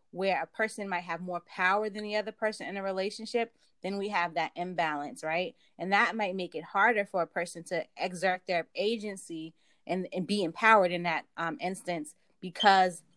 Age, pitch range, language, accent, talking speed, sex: 20-39, 170-195 Hz, English, American, 190 wpm, female